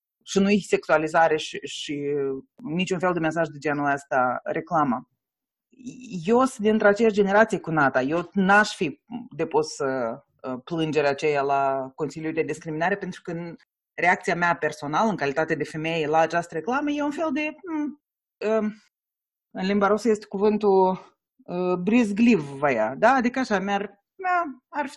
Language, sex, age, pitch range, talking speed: Romanian, female, 30-49, 165-225 Hz, 150 wpm